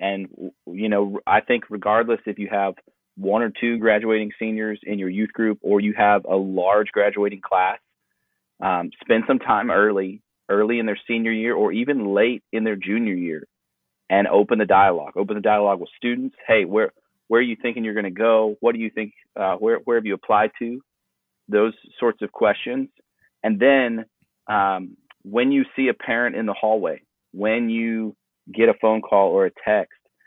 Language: English